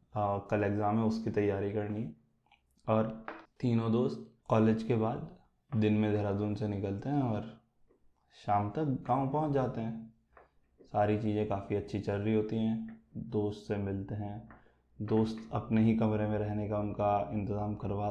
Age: 20-39